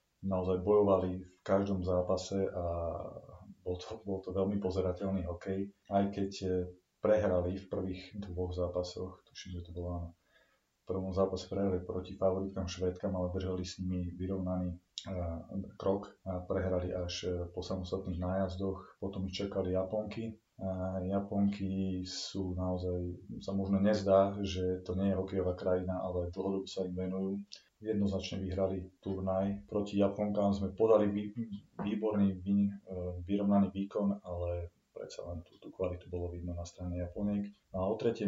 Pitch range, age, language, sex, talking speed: 90-100 Hz, 30-49, Slovak, male, 145 wpm